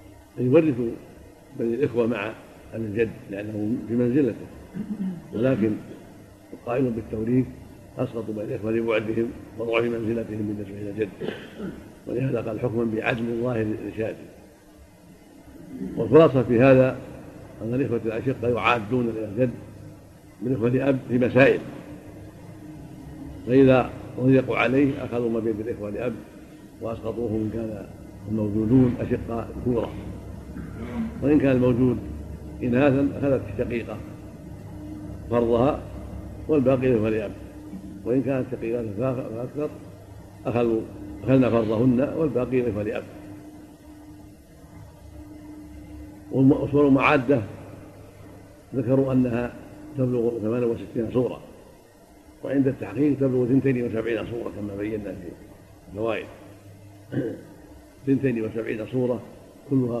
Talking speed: 95 wpm